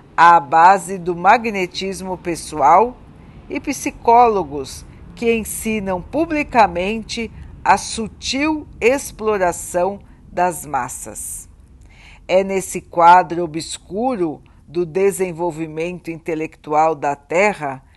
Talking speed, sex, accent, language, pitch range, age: 80 wpm, female, Brazilian, Portuguese, 165-210 Hz, 50-69